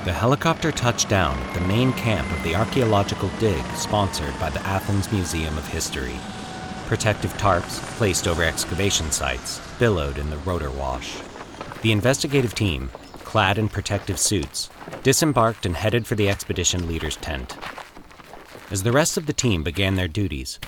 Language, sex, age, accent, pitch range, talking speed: English, male, 40-59, American, 85-110 Hz, 155 wpm